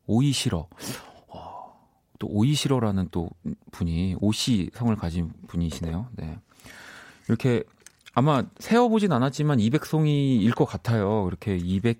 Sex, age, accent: male, 40-59, native